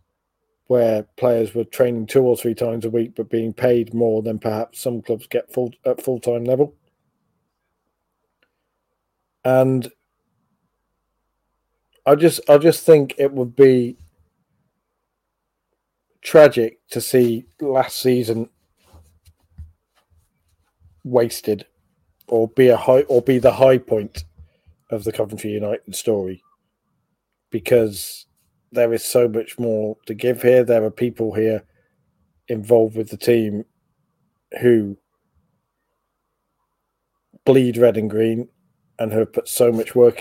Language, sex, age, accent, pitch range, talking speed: English, male, 40-59, British, 110-125 Hz, 120 wpm